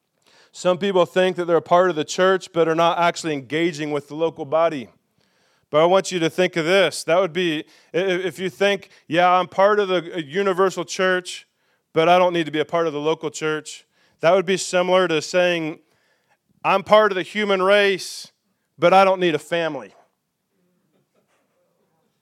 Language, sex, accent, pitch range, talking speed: English, male, American, 160-195 Hz, 190 wpm